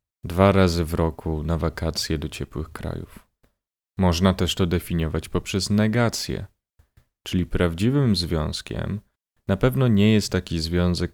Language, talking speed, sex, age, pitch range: Polish, 130 wpm, male, 30-49, 80-100 Hz